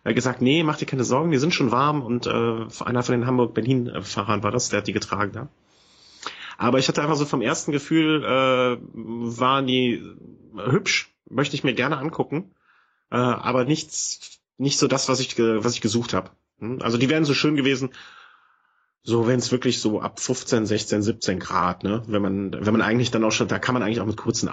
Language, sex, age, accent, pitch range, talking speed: German, male, 30-49, German, 105-130 Hz, 210 wpm